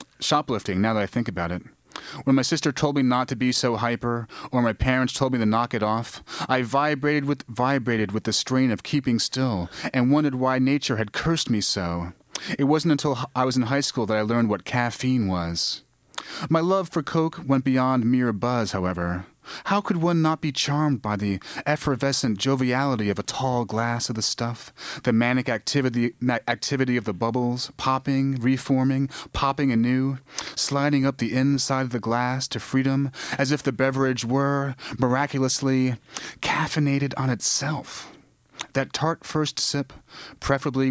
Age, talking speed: 30-49, 175 wpm